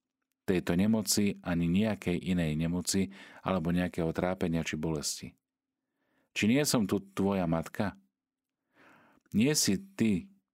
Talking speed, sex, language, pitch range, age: 115 wpm, male, Slovak, 85-120 Hz, 40-59